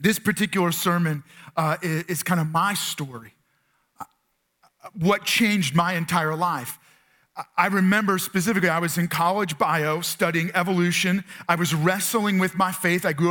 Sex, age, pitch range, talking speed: male, 40-59, 170-205 Hz, 150 wpm